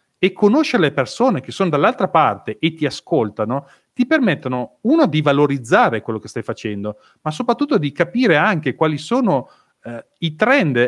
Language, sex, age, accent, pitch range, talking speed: Italian, male, 40-59, native, 130-195 Hz, 165 wpm